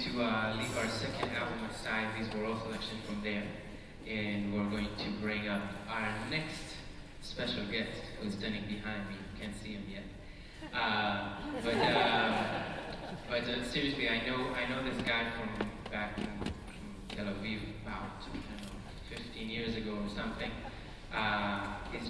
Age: 20-39